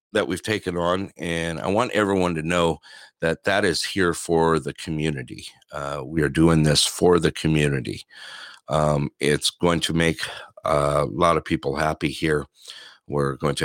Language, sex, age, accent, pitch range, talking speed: English, male, 50-69, American, 70-90 Hz, 170 wpm